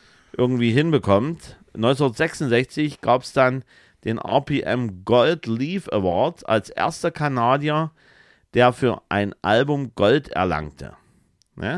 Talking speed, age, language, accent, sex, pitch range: 100 wpm, 50-69, German, German, male, 110-150 Hz